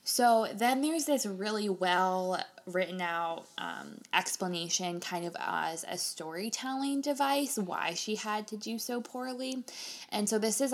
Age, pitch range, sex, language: 20-39, 180-225 Hz, female, English